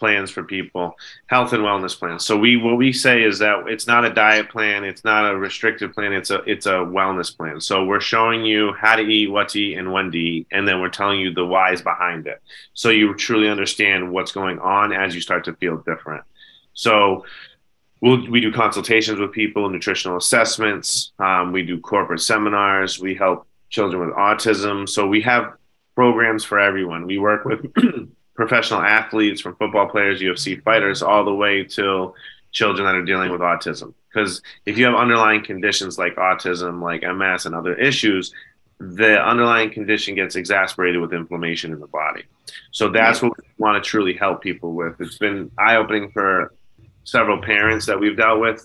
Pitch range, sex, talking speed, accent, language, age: 95-110 Hz, male, 190 wpm, American, English, 30-49